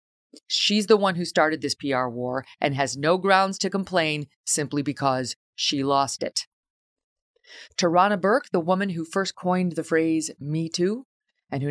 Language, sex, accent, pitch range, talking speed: English, female, American, 150-195 Hz, 165 wpm